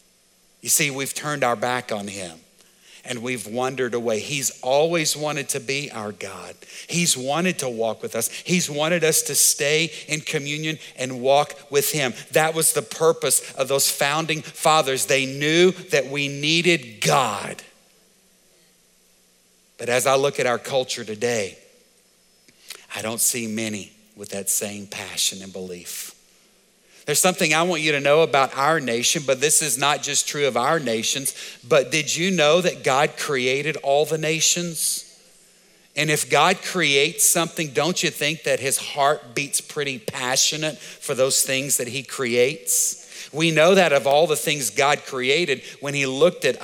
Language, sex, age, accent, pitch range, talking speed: English, male, 50-69, American, 125-155 Hz, 165 wpm